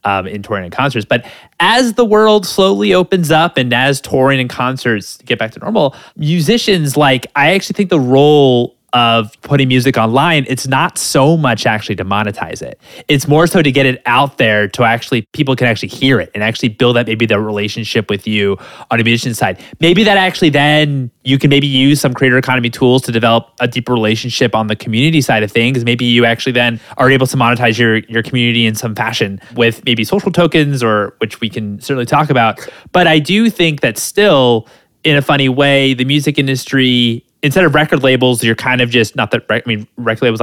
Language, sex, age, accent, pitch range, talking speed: English, male, 20-39, American, 115-145 Hz, 210 wpm